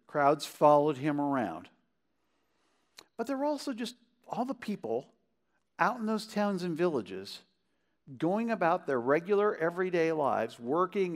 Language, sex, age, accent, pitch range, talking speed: English, male, 50-69, American, 135-200 Hz, 135 wpm